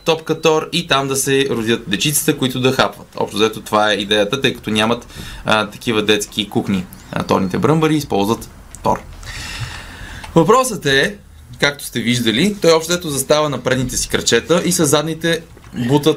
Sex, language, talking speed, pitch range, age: male, Bulgarian, 160 wpm, 110-150 Hz, 20-39